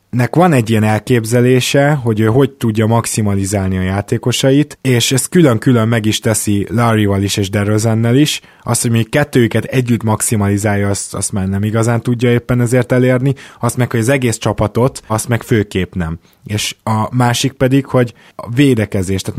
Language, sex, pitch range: Hungarian, male, 100-120 Hz